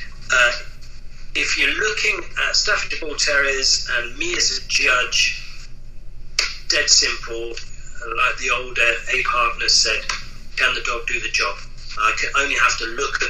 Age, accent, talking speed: 40-59, British, 150 wpm